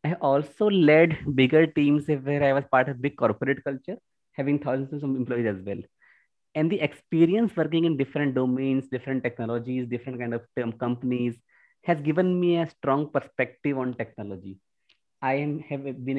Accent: Indian